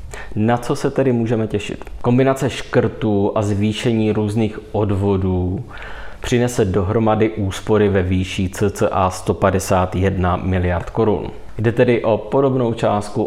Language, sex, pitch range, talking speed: Czech, male, 95-110 Hz, 120 wpm